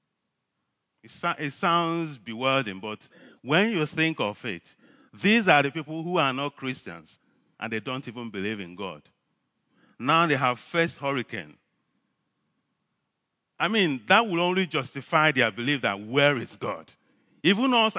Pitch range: 120-180 Hz